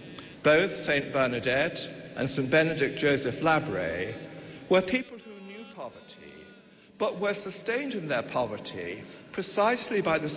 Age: 60-79